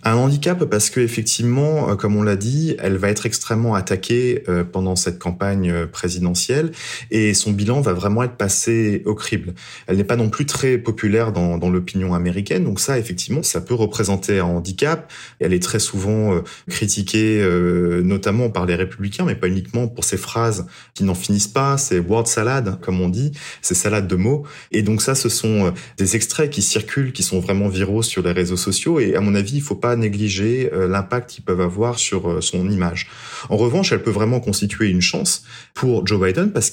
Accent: French